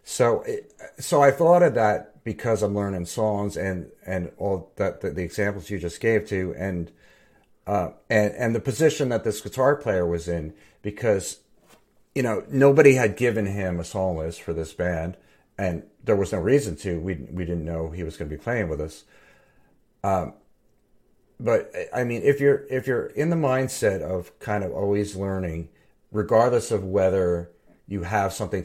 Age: 50-69